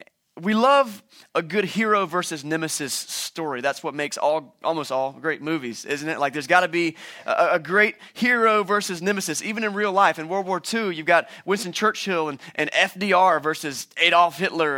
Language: English